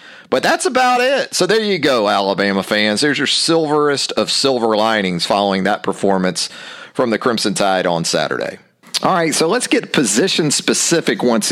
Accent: American